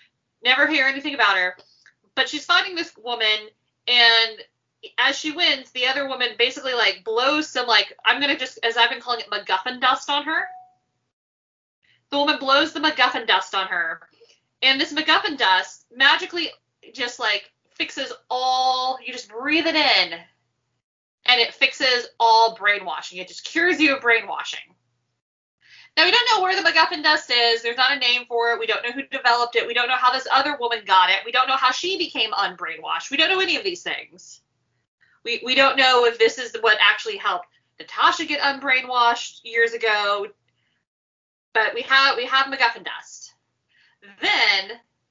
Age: 20-39